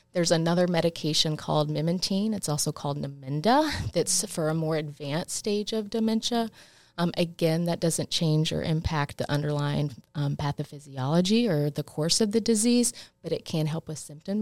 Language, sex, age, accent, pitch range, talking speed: English, female, 30-49, American, 150-180 Hz, 165 wpm